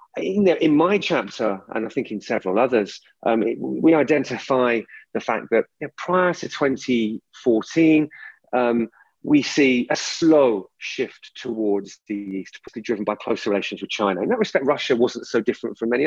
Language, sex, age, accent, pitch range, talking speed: English, male, 30-49, British, 110-145 Hz, 160 wpm